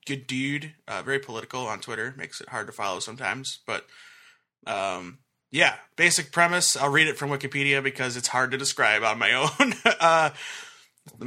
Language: English